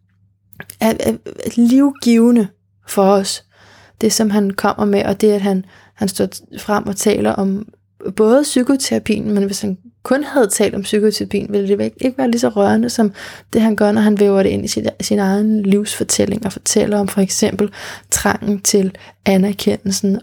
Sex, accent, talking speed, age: female, native, 170 wpm, 20-39